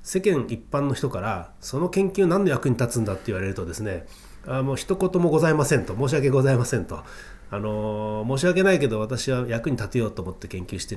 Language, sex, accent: Japanese, male, native